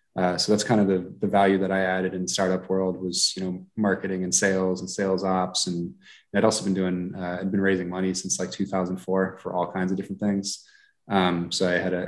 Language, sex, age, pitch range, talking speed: English, male, 20-39, 90-95 Hz, 235 wpm